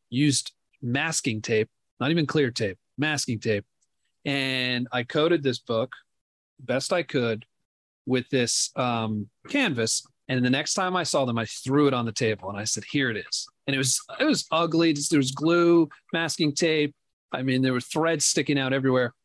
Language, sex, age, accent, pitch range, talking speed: English, male, 40-59, American, 120-150 Hz, 185 wpm